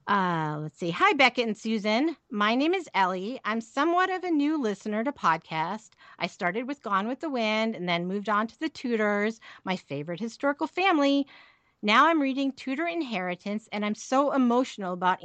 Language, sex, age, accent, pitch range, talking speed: English, female, 40-59, American, 205-285 Hz, 185 wpm